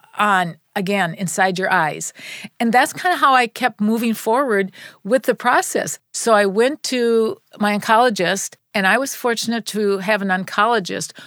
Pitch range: 200-235 Hz